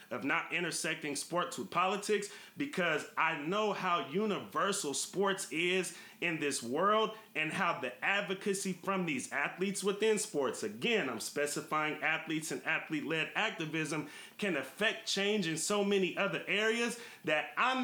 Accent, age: American, 30-49